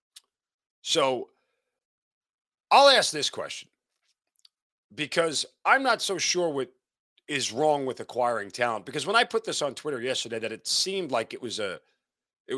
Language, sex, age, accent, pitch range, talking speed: English, male, 40-59, American, 125-160 Hz, 155 wpm